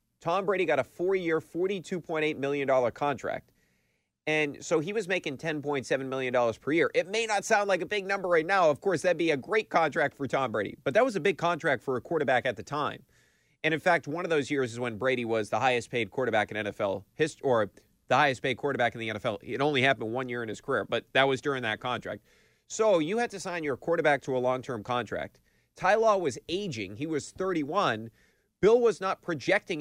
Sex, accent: male, American